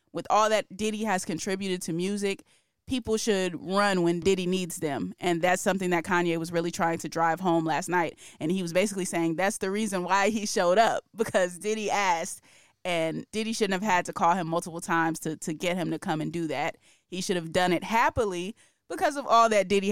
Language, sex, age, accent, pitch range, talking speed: English, female, 20-39, American, 175-225 Hz, 220 wpm